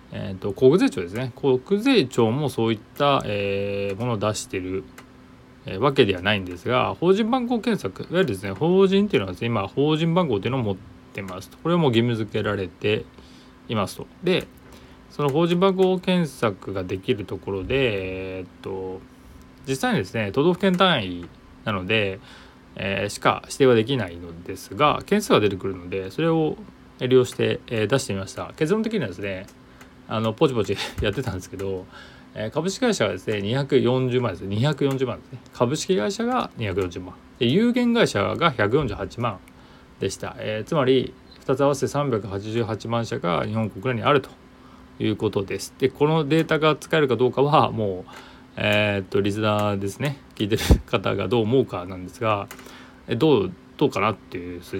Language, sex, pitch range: Japanese, male, 100-145 Hz